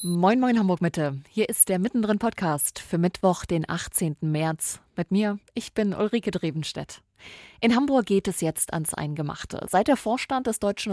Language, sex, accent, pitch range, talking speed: English, female, German, 160-205 Hz, 175 wpm